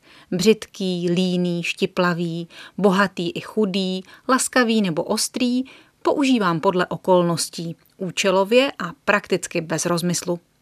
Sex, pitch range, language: female, 175-225 Hz, Czech